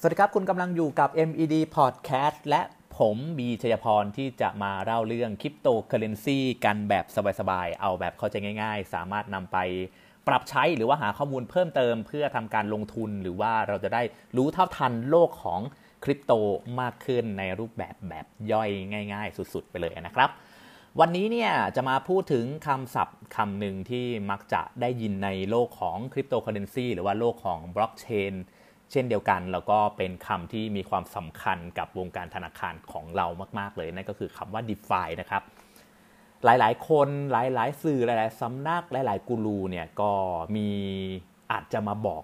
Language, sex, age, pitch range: Thai, male, 30-49, 100-135 Hz